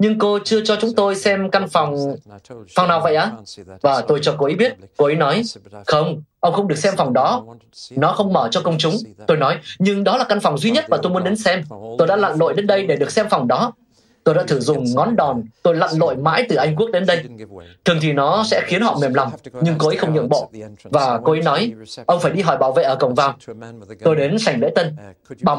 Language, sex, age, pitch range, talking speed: Vietnamese, male, 20-39, 135-195 Hz, 255 wpm